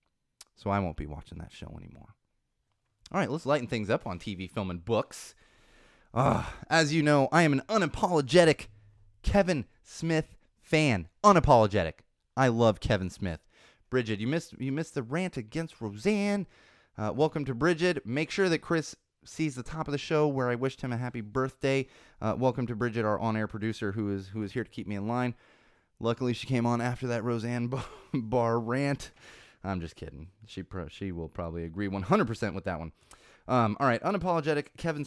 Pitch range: 105-145 Hz